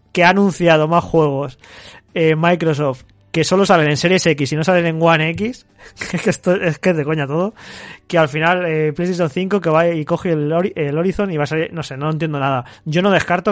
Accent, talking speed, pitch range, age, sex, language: Spanish, 235 wpm, 145-170 Hz, 20-39, male, Spanish